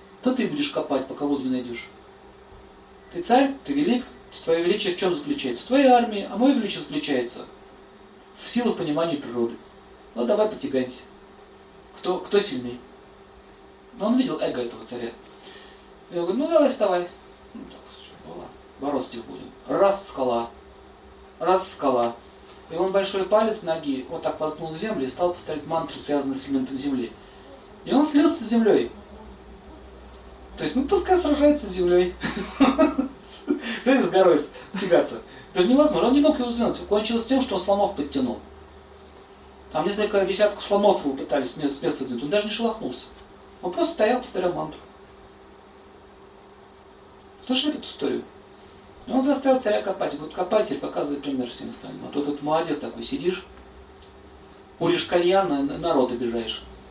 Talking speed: 145 wpm